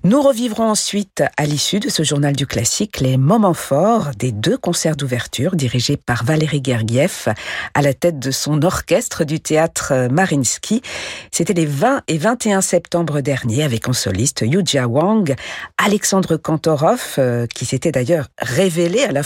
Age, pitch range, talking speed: 50-69, 145-200 Hz, 155 wpm